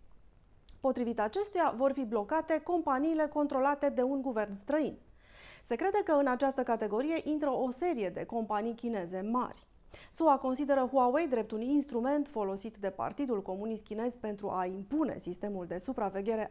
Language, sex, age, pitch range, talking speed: Romanian, female, 30-49, 220-290 Hz, 150 wpm